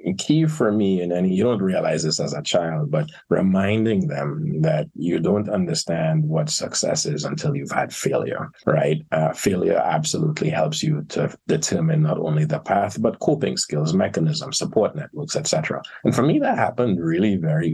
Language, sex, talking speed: English, male, 175 wpm